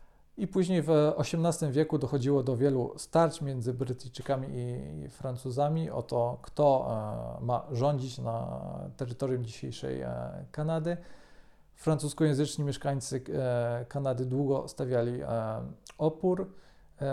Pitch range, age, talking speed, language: 125-150 Hz, 40-59, 100 wpm, Polish